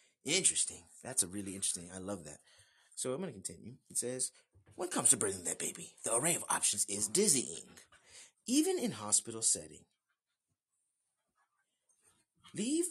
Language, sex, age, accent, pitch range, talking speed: English, male, 30-49, American, 100-170 Hz, 150 wpm